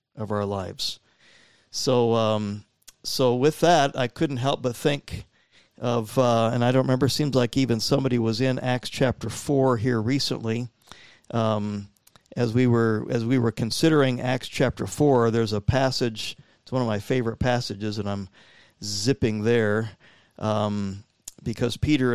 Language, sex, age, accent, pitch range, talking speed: English, male, 50-69, American, 115-140 Hz, 155 wpm